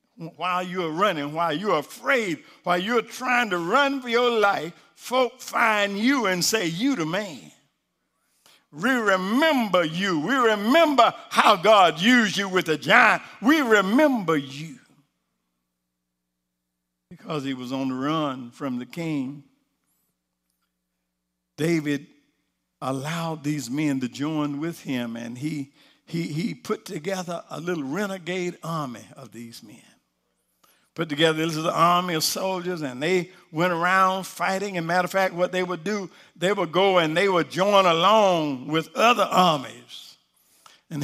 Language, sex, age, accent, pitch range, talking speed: English, male, 50-69, American, 150-225 Hz, 145 wpm